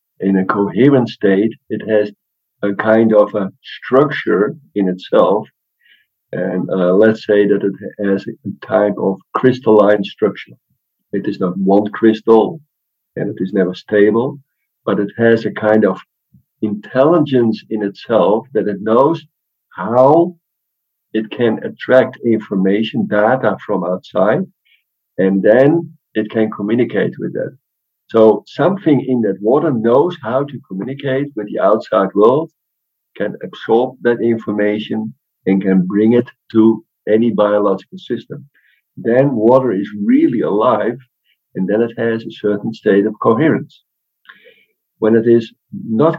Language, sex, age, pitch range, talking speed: English, male, 50-69, 105-130 Hz, 135 wpm